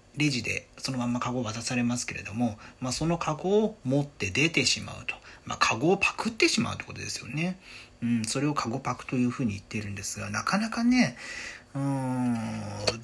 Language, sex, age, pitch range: Japanese, male, 40-59, 110-155 Hz